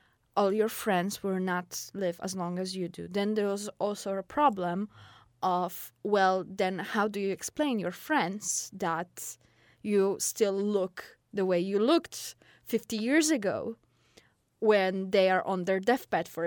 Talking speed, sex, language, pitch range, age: 160 wpm, female, English, 185-230 Hz, 20-39